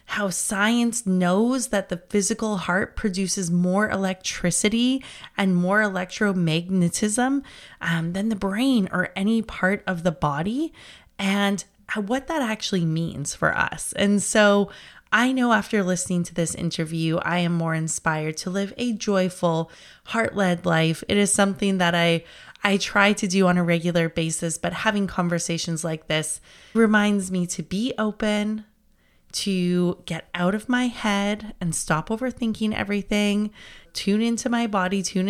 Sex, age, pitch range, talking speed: female, 20-39, 170-210 Hz, 150 wpm